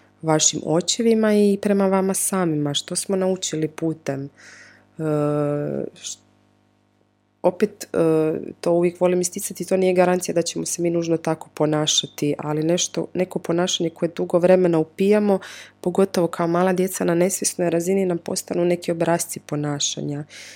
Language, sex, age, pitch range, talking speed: Croatian, female, 20-39, 145-175 Hz, 140 wpm